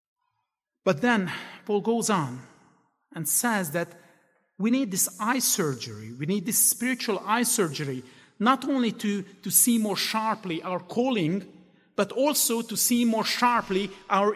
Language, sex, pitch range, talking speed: English, male, 170-235 Hz, 145 wpm